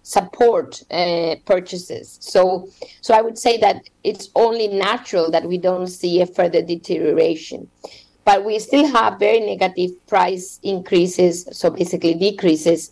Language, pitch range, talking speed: English, 180-225 Hz, 140 wpm